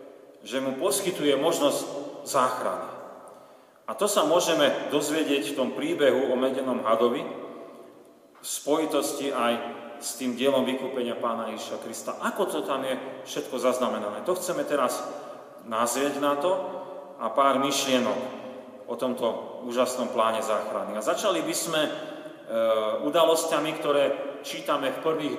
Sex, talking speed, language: male, 130 wpm, Slovak